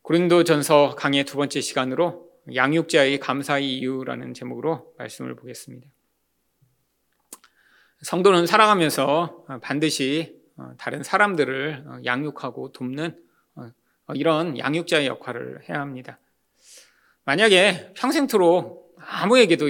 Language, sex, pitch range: Korean, male, 135-180 Hz